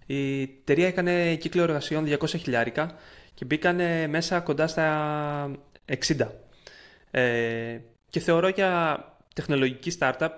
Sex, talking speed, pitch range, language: male, 105 wpm, 125-155 Hz, Greek